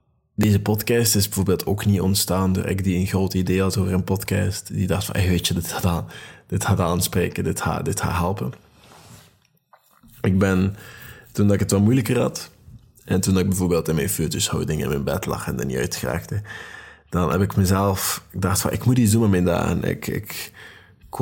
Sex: male